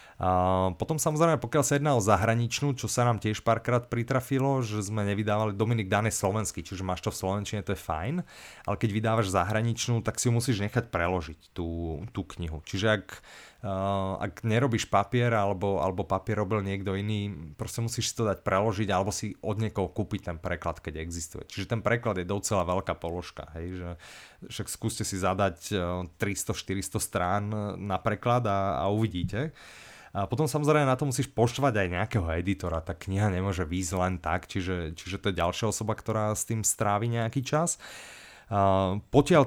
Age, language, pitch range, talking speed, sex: 30-49, Slovak, 95-115 Hz, 175 wpm, male